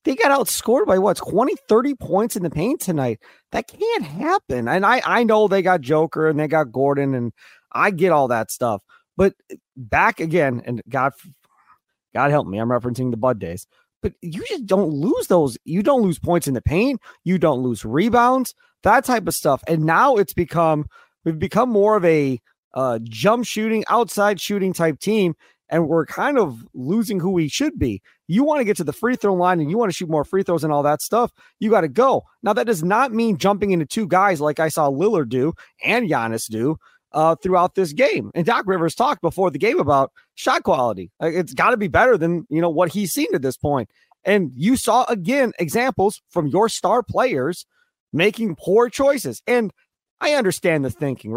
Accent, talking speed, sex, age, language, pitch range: American, 205 wpm, male, 30-49, English, 150-220 Hz